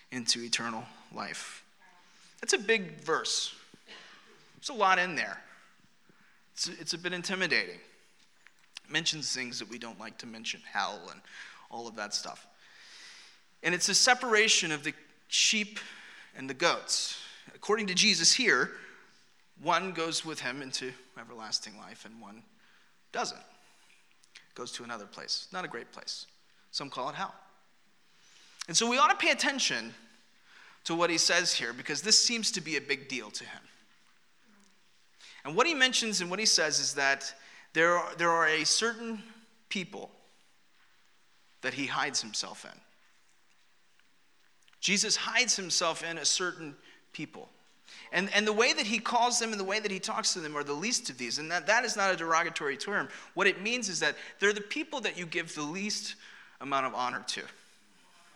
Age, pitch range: 30-49, 150-215 Hz